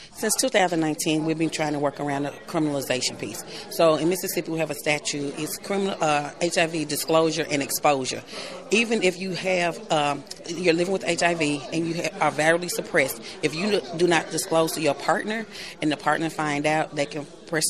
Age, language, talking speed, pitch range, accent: 40-59, English, 190 wpm, 150-175 Hz, American